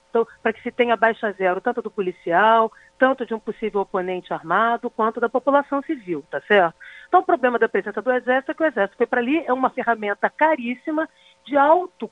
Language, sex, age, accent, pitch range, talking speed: Portuguese, female, 40-59, Brazilian, 225-295 Hz, 205 wpm